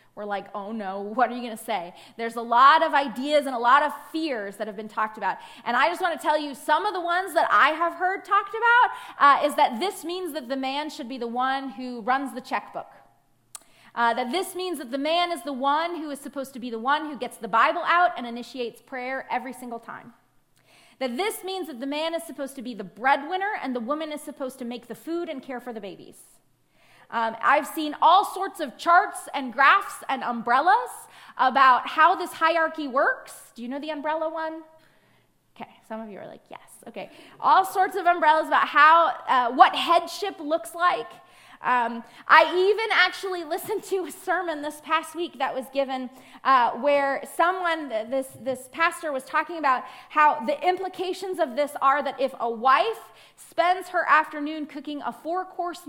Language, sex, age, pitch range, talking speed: English, female, 30-49, 250-340 Hz, 205 wpm